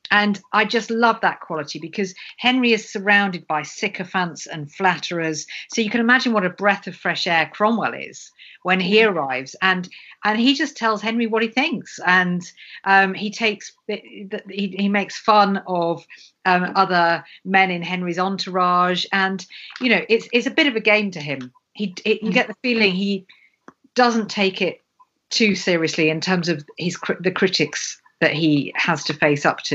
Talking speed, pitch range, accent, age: 180 wpm, 165-210 Hz, British, 50-69